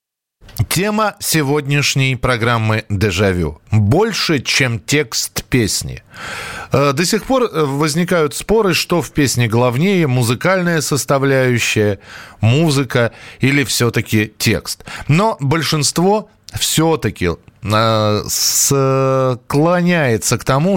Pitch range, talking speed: 115-155 Hz, 85 wpm